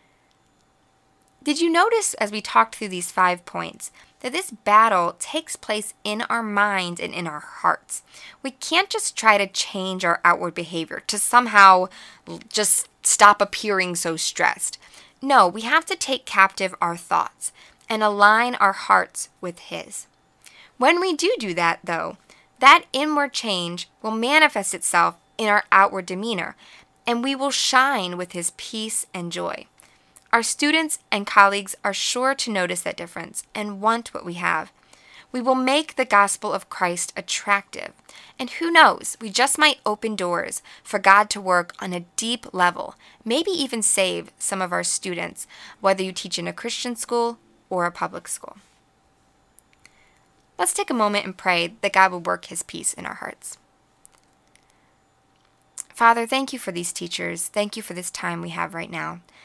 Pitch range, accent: 180-245 Hz, American